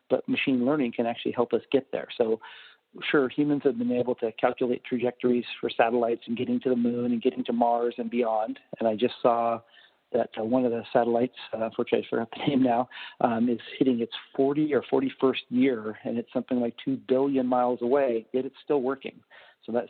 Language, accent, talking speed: English, American, 205 wpm